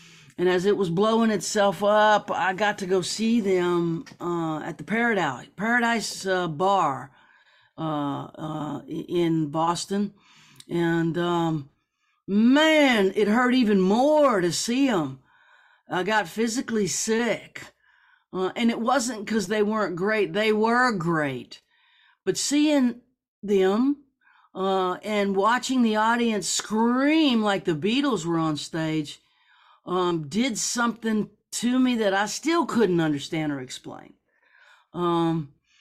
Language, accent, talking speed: English, American, 130 wpm